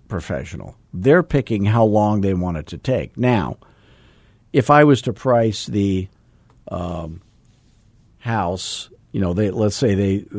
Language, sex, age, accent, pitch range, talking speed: English, male, 50-69, American, 90-105 Hz, 145 wpm